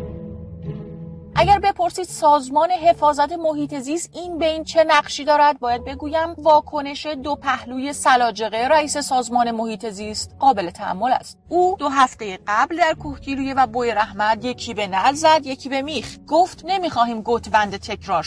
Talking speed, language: 145 wpm, Persian